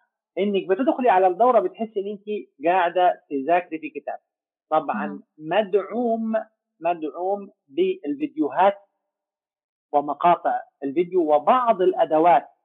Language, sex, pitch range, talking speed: English, male, 155-240 Hz, 90 wpm